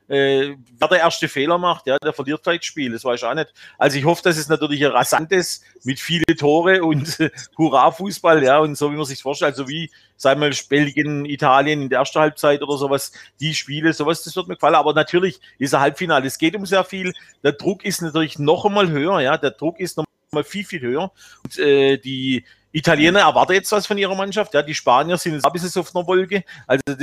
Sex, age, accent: male, 40-59, German